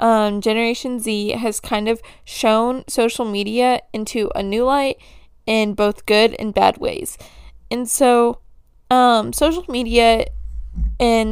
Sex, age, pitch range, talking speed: female, 10-29, 215-255 Hz, 135 wpm